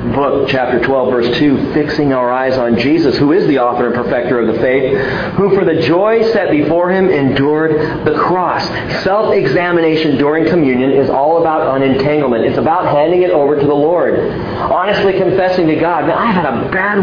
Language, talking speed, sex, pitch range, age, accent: English, 185 wpm, male, 135-180 Hz, 40-59, American